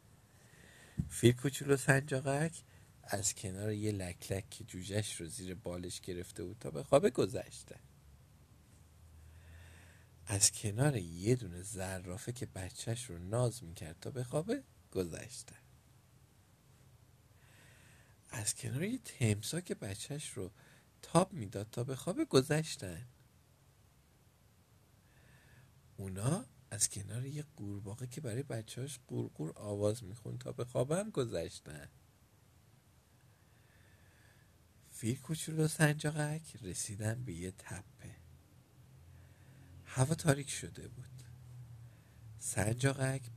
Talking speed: 100 wpm